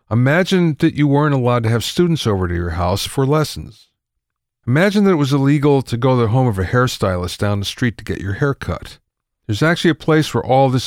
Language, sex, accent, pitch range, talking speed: English, male, American, 105-145 Hz, 230 wpm